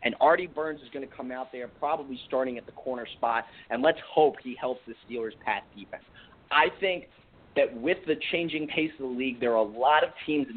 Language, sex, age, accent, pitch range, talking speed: English, male, 30-49, American, 130-180 Hz, 235 wpm